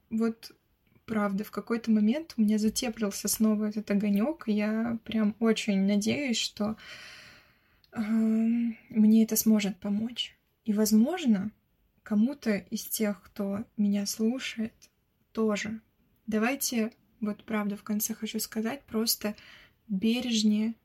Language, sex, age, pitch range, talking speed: Russian, female, 20-39, 210-235 Hz, 110 wpm